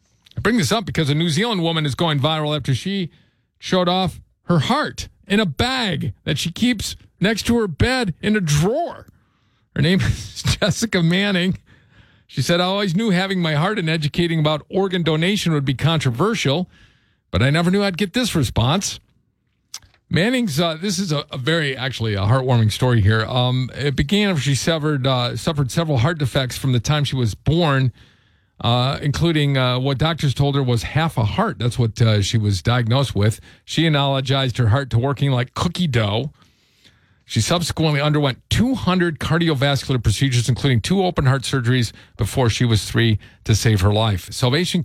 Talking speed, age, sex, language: 180 wpm, 40-59, male, English